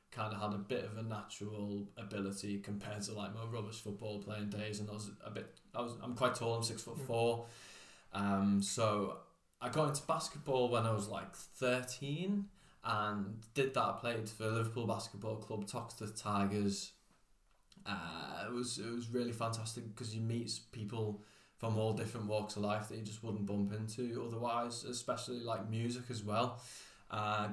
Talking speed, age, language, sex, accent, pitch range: 185 wpm, 20-39, English, male, British, 100-120 Hz